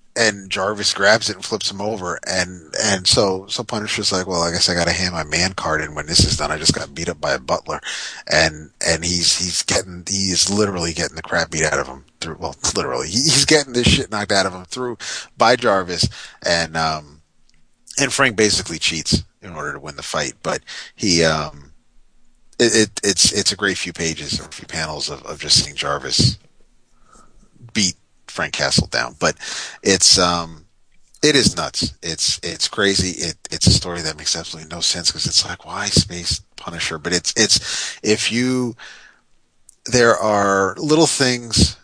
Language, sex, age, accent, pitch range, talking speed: English, male, 30-49, American, 85-105 Hz, 190 wpm